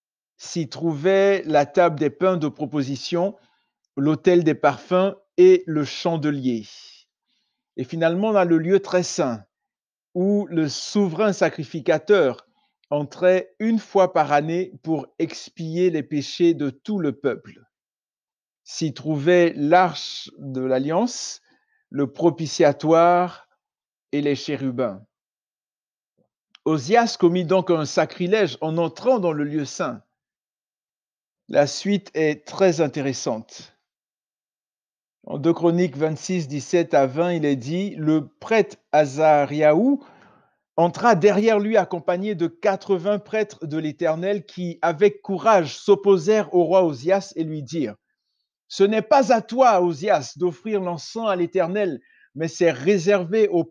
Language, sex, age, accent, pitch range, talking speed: French, male, 50-69, French, 155-200 Hz, 125 wpm